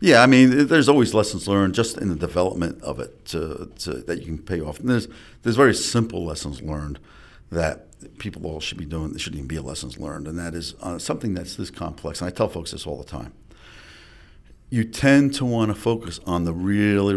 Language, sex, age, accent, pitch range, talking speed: English, male, 50-69, American, 80-100 Hz, 225 wpm